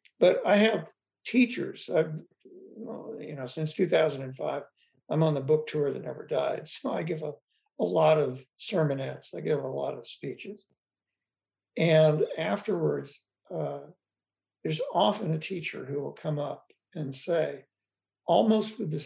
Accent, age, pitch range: American, 60-79, 130-185 Hz